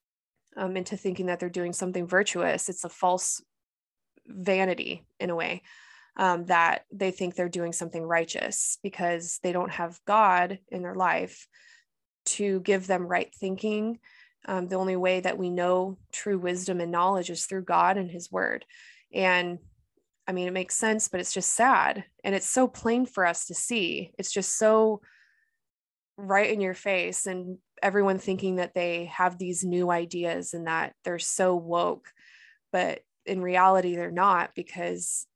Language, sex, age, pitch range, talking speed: English, female, 20-39, 180-200 Hz, 165 wpm